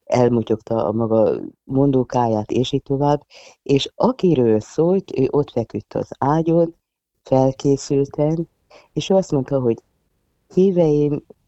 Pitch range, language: 110-140 Hz, Hungarian